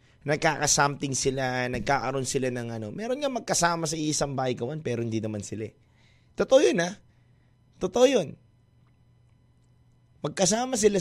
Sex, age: male, 20-39